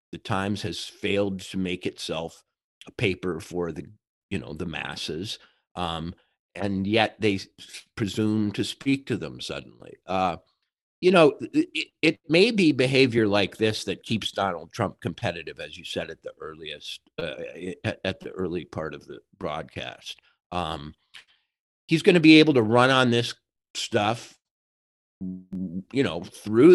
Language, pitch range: English, 95-130 Hz